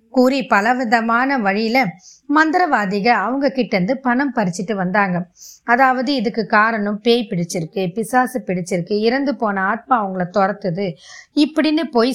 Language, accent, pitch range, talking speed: Tamil, native, 195-260 Hz, 120 wpm